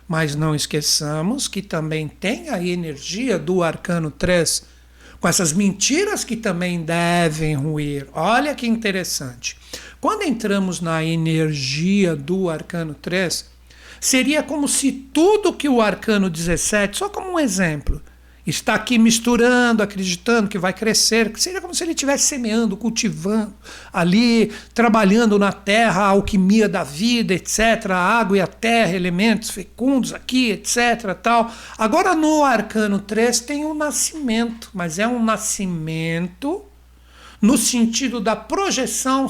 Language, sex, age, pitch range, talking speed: Portuguese, male, 60-79, 175-240 Hz, 135 wpm